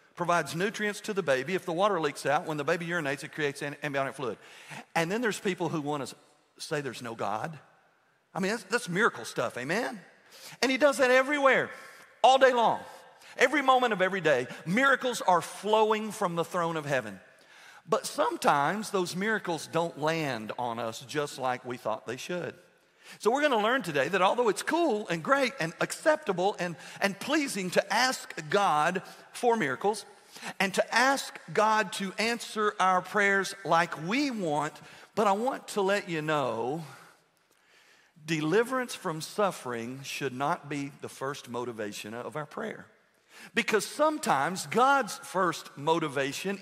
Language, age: English, 50-69